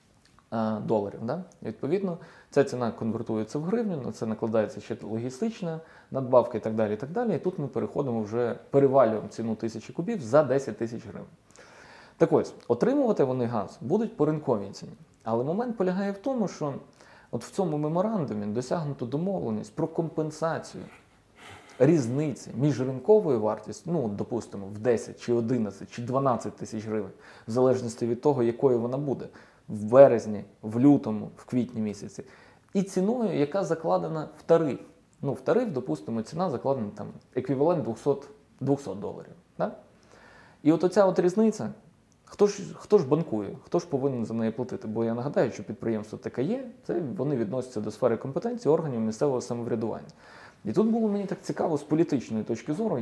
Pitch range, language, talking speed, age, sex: 115-170 Hz, Ukrainian, 160 wpm, 20-39, male